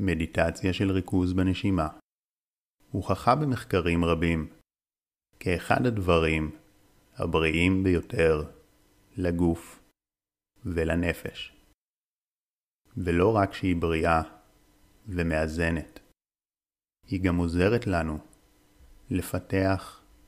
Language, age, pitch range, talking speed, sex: Hebrew, 30-49, 85-100 Hz, 70 wpm, male